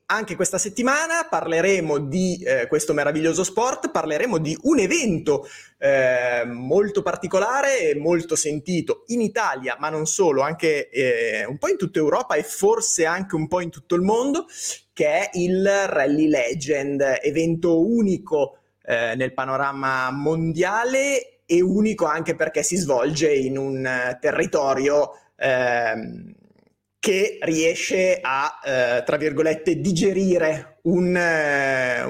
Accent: native